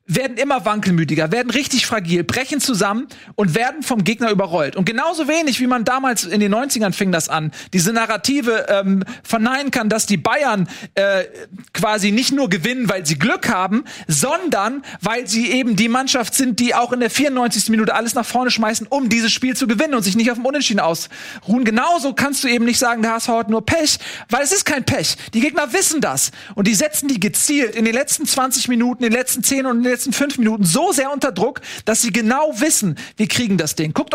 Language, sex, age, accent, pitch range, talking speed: German, male, 40-59, German, 210-270 Hz, 210 wpm